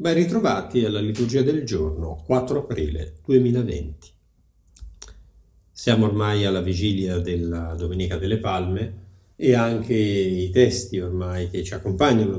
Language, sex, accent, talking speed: Italian, male, native, 120 wpm